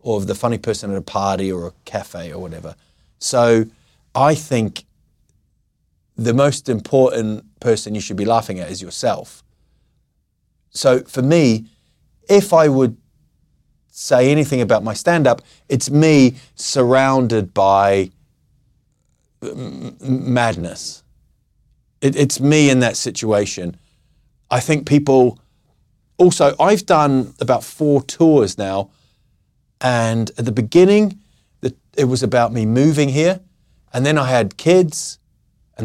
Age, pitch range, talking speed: 30-49, 110-145 Hz, 125 wpm